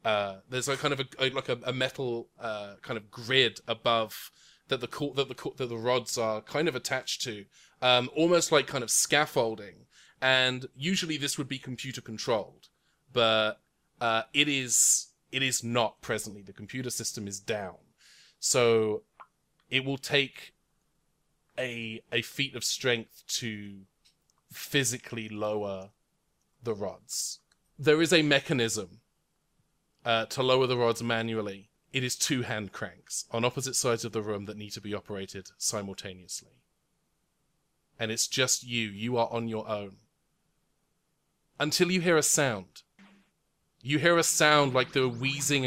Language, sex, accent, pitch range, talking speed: English, male, British, 115-145 Hz, 155 wpm